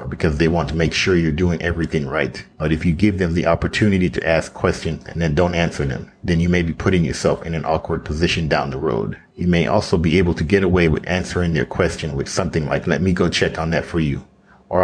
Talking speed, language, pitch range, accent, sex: 250 wpm, English, 80-90 Hz, American, male